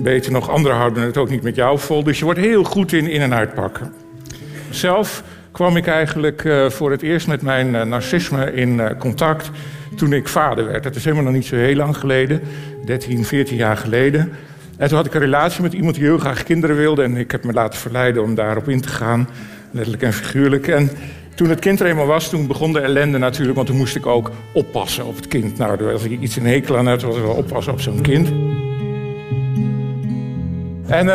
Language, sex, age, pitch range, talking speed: Dutch, male, 50-69, 125-155 Hz, 215 wpm